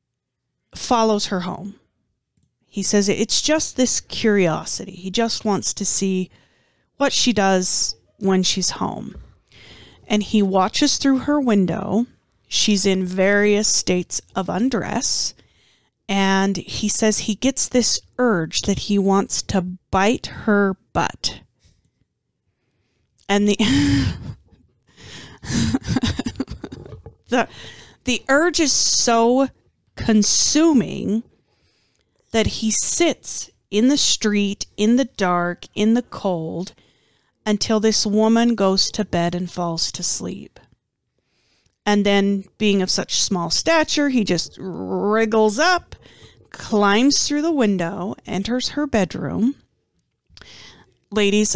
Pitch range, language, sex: 190-230 Hz, English, female